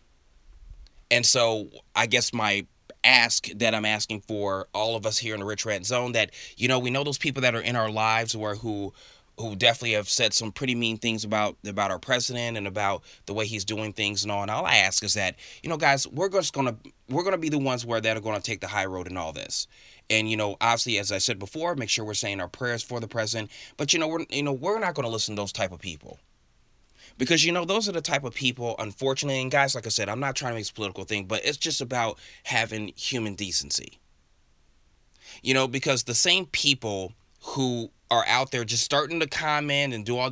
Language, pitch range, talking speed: English, 105-130 Hz, 245 wpm